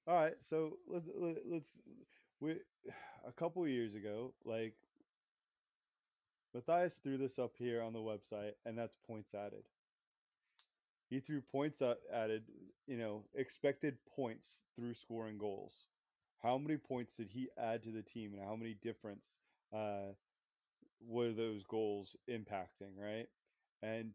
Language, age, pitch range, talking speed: English, 20-39, 105-125 Hz, 140 wpm